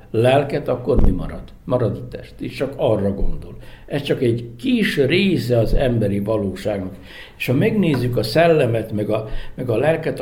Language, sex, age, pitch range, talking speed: Hungarian, male, 60-79, 100-125 Hz, 170 wpm